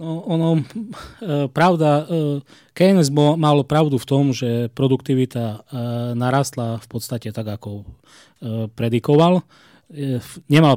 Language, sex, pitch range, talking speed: Slovak, male, 115-140 Hz, 90 wpm